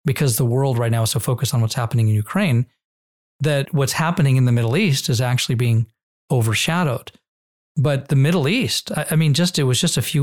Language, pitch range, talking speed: English, 120-145 Hz, 210 wpm